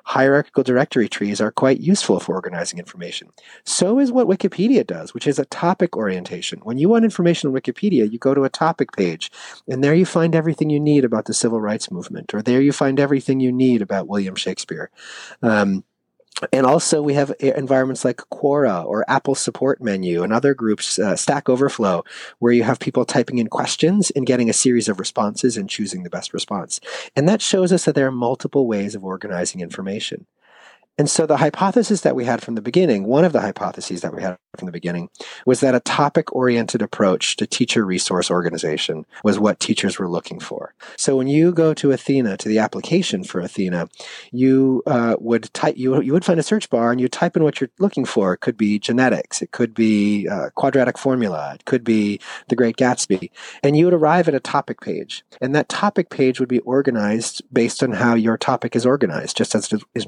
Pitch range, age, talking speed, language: 115-155 Hz, 30-49, 205 wpm, English